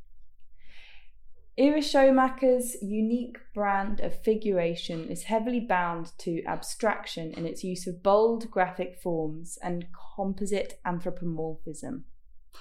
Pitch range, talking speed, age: 175-240 Hz, 100 wpm, 20-39